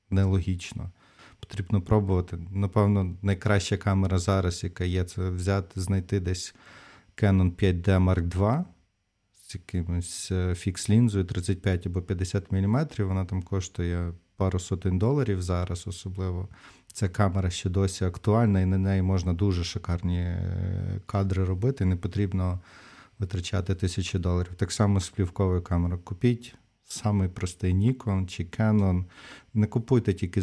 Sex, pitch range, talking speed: male, 90-100 Hz, 125 wpm